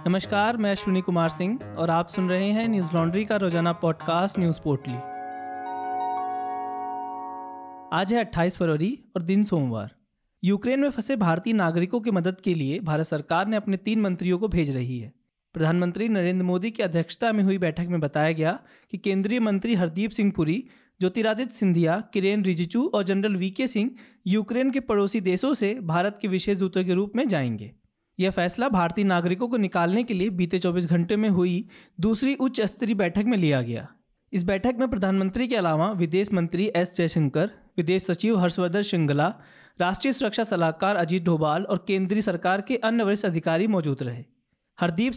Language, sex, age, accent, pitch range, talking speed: Hindi, male, 20-39, native, 170-220 Hz, 175 wpm